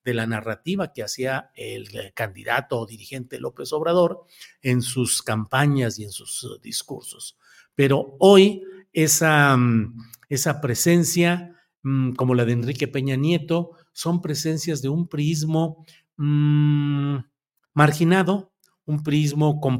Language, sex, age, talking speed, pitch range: Spanish, male, 50-69, 115 wpm, 125-170 Hz